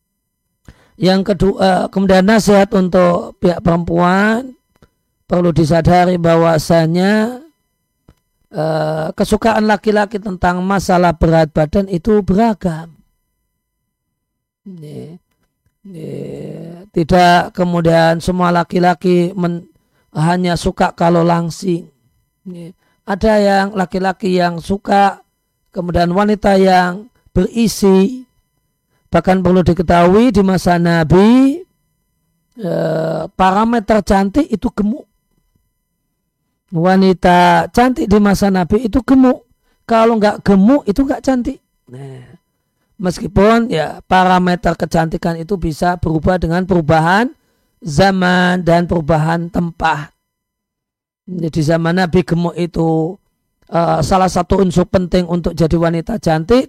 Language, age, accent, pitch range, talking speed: Indonesian, 40-59, native, 170-200 Hz, 90 wpm